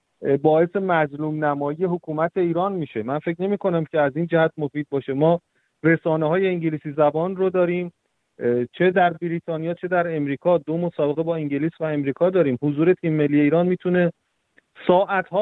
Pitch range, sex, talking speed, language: 145-175 Hz, male, 165 wpm, Persian